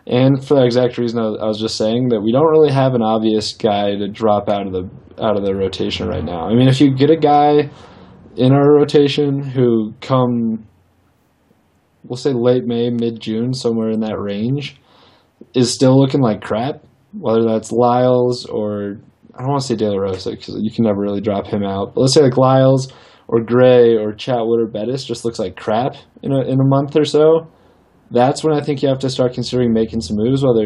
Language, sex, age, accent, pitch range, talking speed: English, male, 20-39, American, 110-135 Hz, 215 wpm